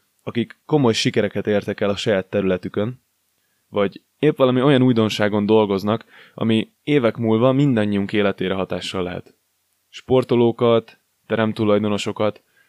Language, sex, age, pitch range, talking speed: Hungarian, male, 20-39, 100-115 Hz, 110 wpm